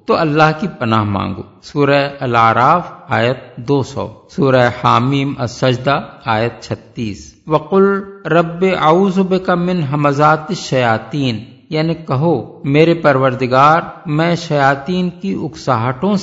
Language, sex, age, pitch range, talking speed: Urdu, male, 50-69, 130-180 Hz, 110 wpm